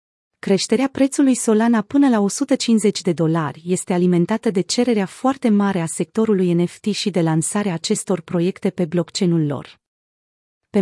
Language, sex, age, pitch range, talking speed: Romanian, female, 30-49, 175-220 Hz, 145 wpm